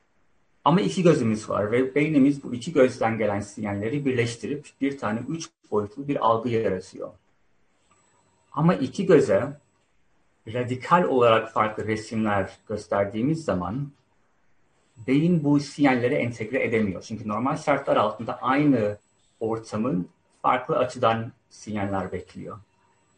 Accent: native